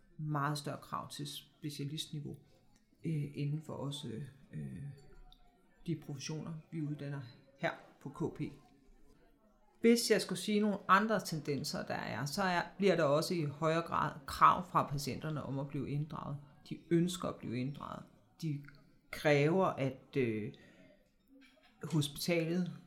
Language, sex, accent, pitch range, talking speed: Danish, female, native, 145-170 Hz, 120 wpm